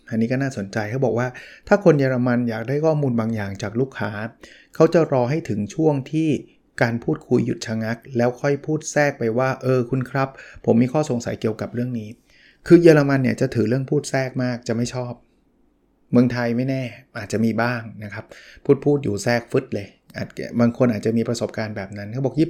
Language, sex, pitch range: Thai, male, 115-140 Hz